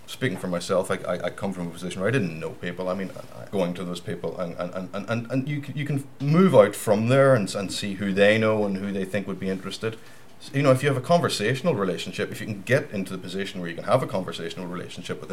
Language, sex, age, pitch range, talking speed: English, male, 40-59, 95-120 Hz, 280 wpm